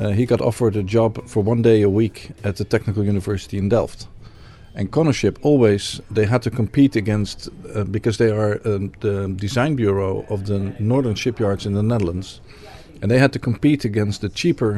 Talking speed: 195 wpm